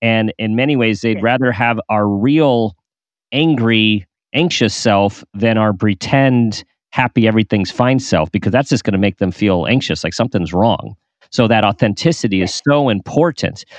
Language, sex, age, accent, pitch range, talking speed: English, male, 40-59, American, 105-125 Hz, 160 wpm